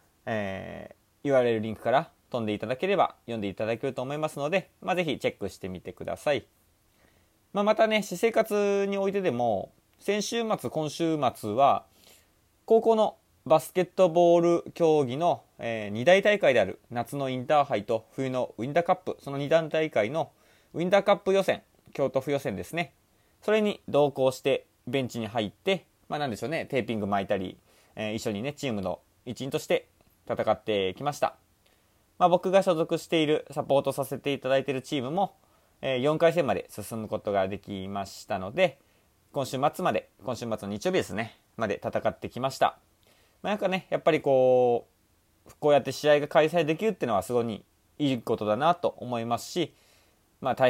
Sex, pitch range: male, 110-165 Hz